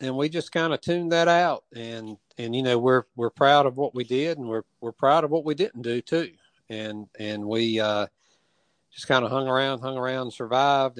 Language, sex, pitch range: English, male, 115-130 Hz